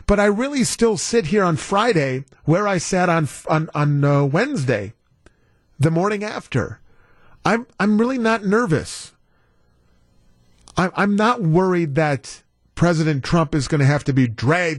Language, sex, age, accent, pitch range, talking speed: English, male, 40-59, American, 130-190 Hz, 145 wpm